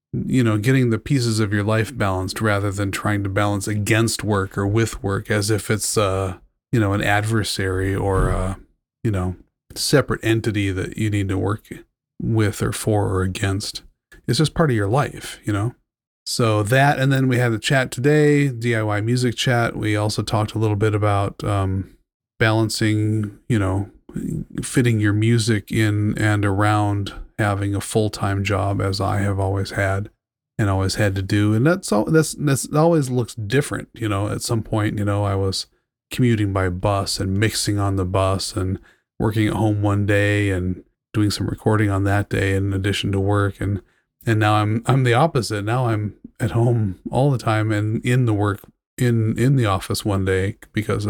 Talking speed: 190 wpm